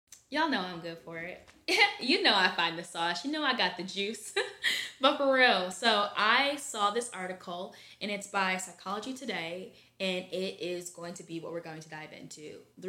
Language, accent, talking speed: English, American, 205 wpm